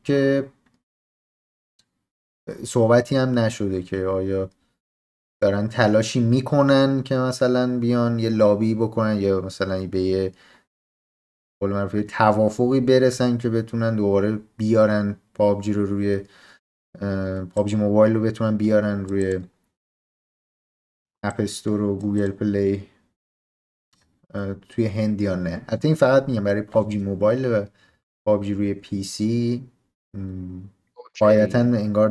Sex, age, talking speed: male, 30-49, 110 wpm